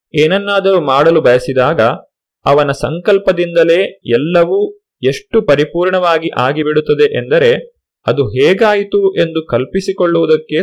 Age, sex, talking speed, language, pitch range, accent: 30-49, male, 80 wpm, Kannada, 130-170 Hz, native